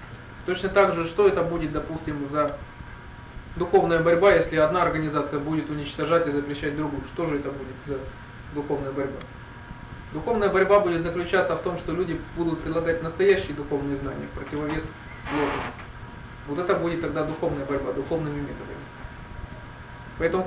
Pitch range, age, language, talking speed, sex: 140-180 Hz, 20-39, Russian, 145 wpm, male